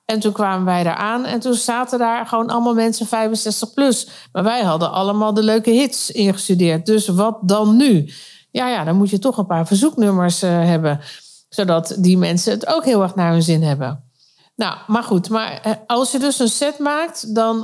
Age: 50-69